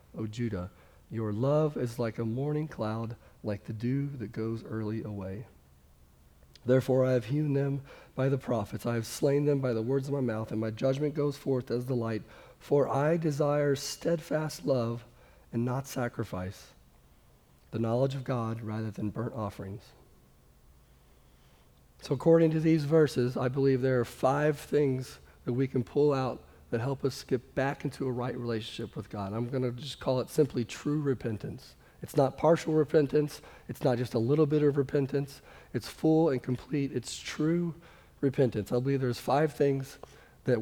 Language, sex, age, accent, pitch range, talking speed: English, male, 50-69, American, 115-145 Hz, 175 wpm